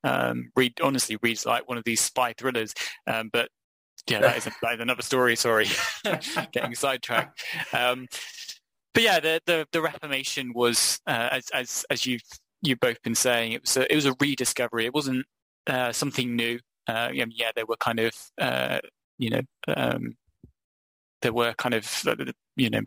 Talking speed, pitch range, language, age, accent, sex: 180 wpm, 115-130 Hz, English, 20-39, British, male